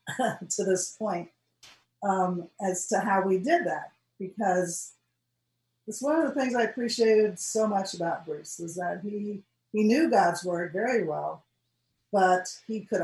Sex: female